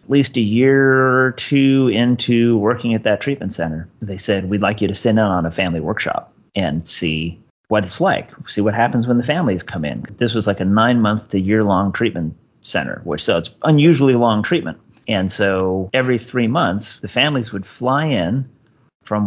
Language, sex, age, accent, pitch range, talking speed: English, male, 30-49, American, 95-125 Hz, 200 wpm